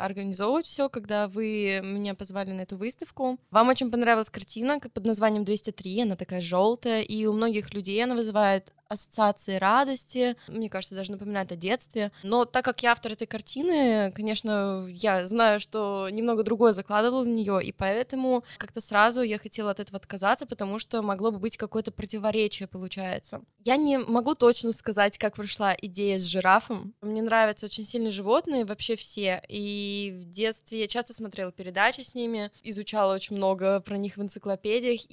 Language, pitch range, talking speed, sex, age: Russian, 195-230 Hz, 170 wpm, female, 20-39